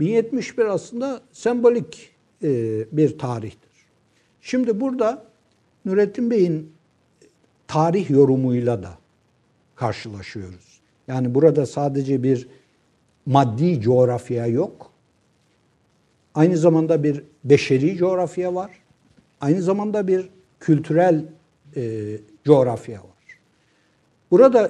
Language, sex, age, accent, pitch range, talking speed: Turkish, male, 60-79, native, 130-175 Hz, 80 wpm